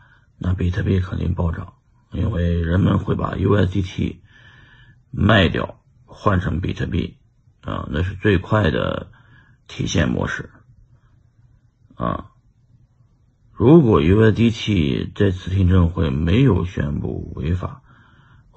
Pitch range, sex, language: 90-120 Hz, male, Chinese